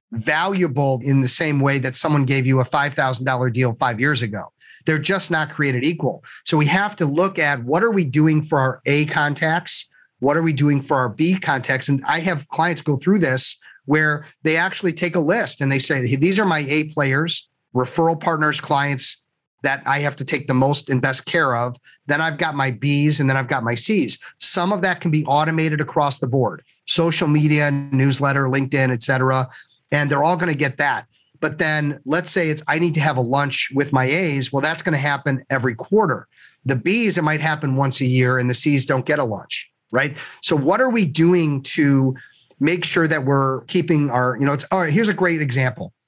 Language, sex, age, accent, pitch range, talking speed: English, male, 40-59, American, 135-160 Hz, 220 wpm